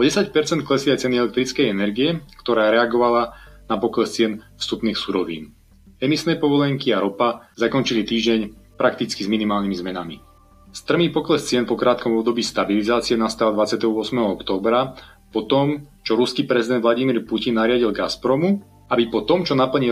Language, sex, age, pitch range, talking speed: Slovak, male, 30-49, 110-135 Hz, 140 wpm